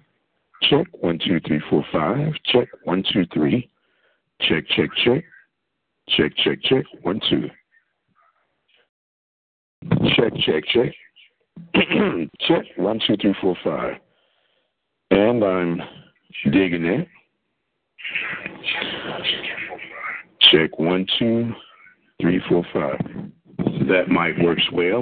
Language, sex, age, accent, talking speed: English, male, 60-79, American, 50 wpm